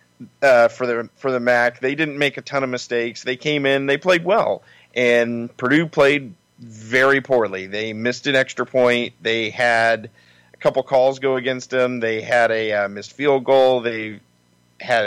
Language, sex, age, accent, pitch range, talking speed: English, male, 40-59, American, 115-135 Hz, 185 wpm